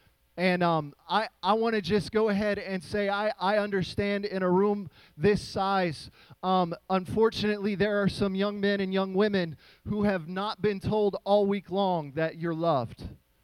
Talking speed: 180 wpm